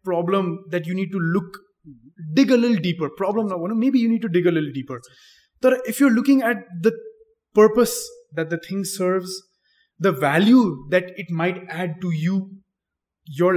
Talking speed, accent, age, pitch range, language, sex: 175 wpm, Indian, 20-39, 165-235 Hz, English, male